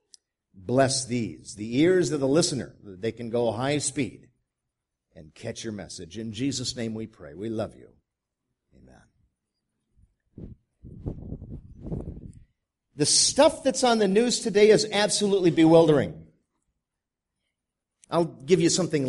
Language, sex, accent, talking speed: English, male, American, 125 wpm